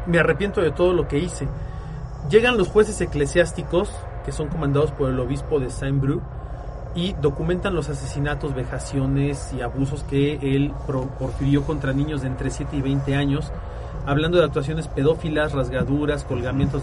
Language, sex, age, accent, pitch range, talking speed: Spanish, male, 40-59, Mexican, 140-170 Hz, 155 wpm